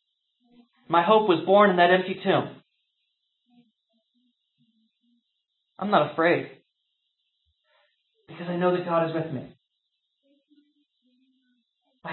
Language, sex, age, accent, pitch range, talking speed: English, male, 40-59, American, 165-245 Hz, 100 wpm